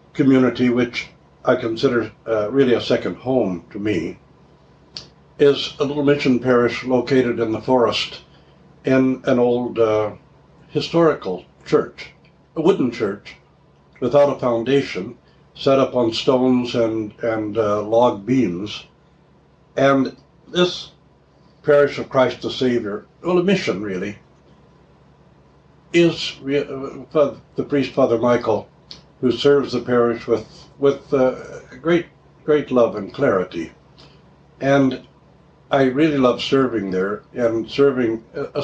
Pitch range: 115-140 Hz